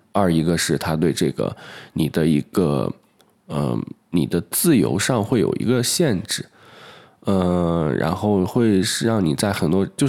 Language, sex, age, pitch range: Chinese, male, 20-39, 80-110 Hz